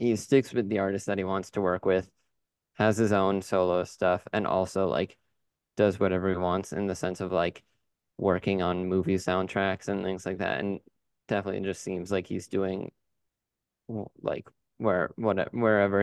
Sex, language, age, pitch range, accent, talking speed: male, English, 20-39, 95-105 Hz, American, 175 wpm